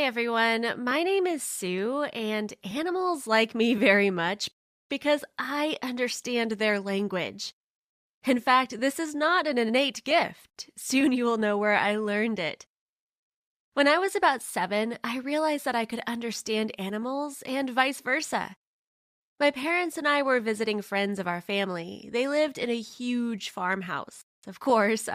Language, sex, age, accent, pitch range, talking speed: English, female, 20-39, American, 210-290 Hz, 160 wpm